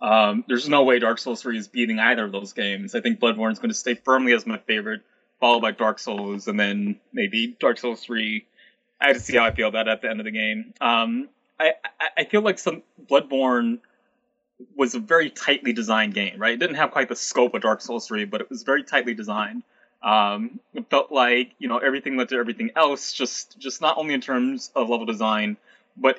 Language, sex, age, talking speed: English, male, 20-39, 230 wpm